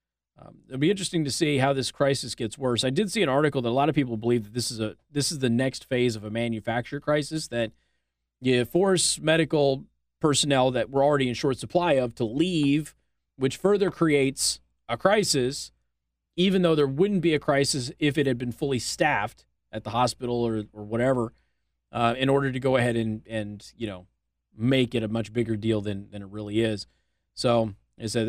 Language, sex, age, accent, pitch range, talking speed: English, male, 30-49, American, 105-140 Hz, 205 wpm